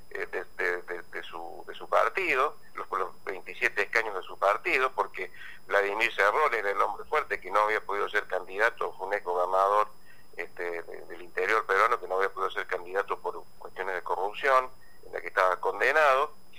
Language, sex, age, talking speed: Spanish, male, 50-69, 180 wpm